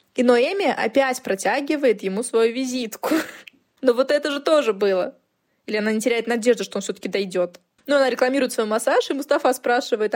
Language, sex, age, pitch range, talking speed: Russian, female, 20-39, 200-265 Hz, 175 wpm